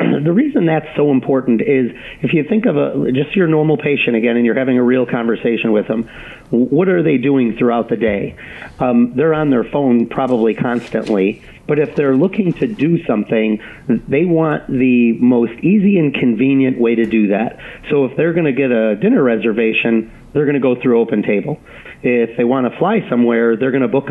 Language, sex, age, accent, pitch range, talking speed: English, male, 40-59, American, 115-140 Hz, 205 wpm